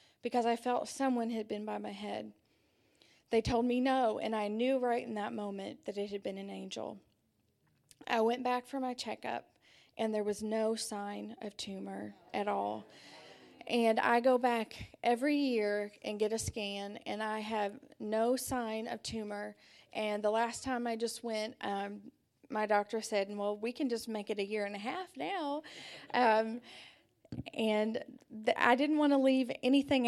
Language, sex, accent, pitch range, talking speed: English, female, American, 205-240 Hz, 175 wpm